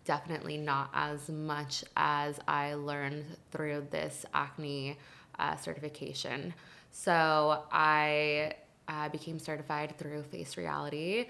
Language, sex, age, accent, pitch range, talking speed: English, female, 20-39, American, 145-160 Hz, 105 wpm